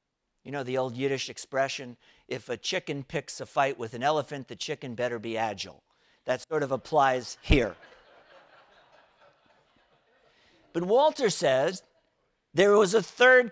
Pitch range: 145-200 Hz